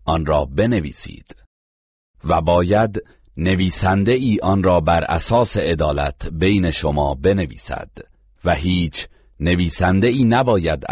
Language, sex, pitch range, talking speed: Persian, male, 75-95 Hz, 110 wpm